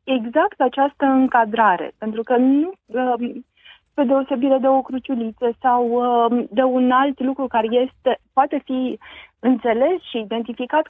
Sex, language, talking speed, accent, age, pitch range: female, Romanian, 120 wpm, native, 30-49, 230-295 Hz